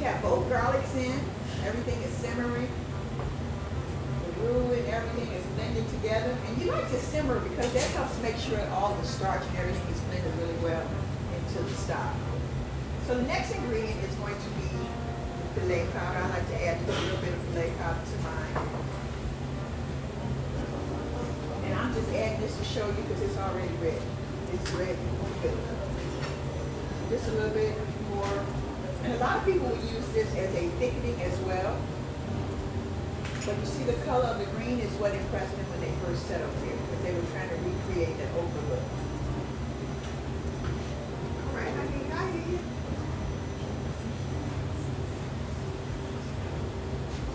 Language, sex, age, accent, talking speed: English, female, 40-59, American, 155 wpm